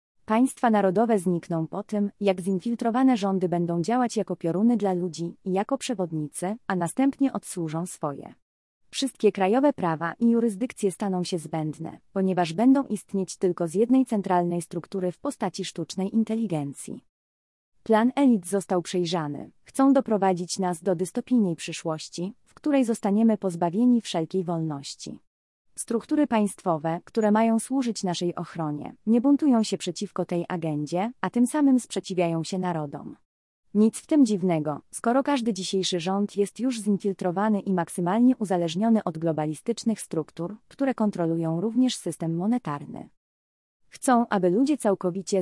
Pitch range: 170-225 Hz